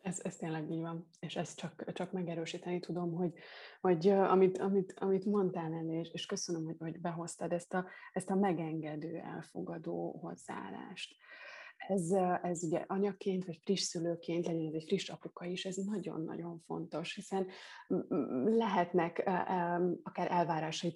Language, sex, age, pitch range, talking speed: Hungarian, female, 20-39, 170-195 Hz, 145 wpm